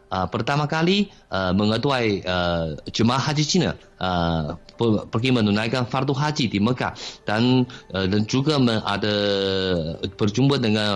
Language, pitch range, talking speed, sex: Malay, 105-145 Hz, 135 wpm, male